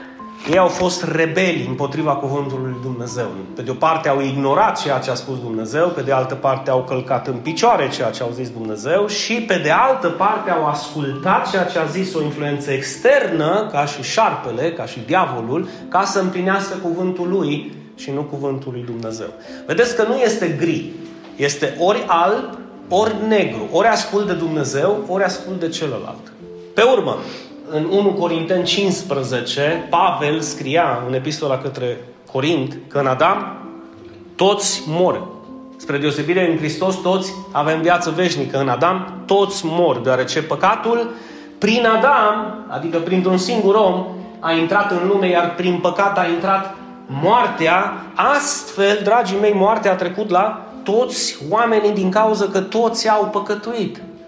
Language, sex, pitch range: Romanian, male, 145-200 Hz